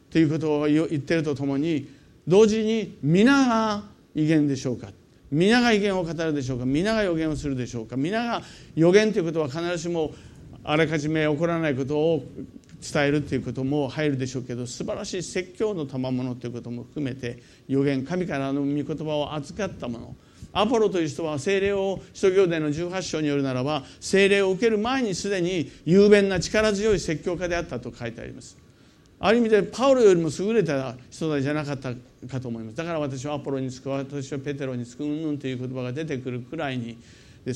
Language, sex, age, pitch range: Japanese, male, 50-69, 135-200 Hz